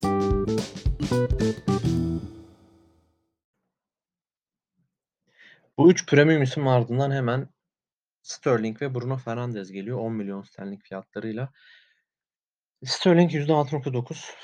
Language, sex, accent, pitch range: Turkish, male, native, 110-125 Hz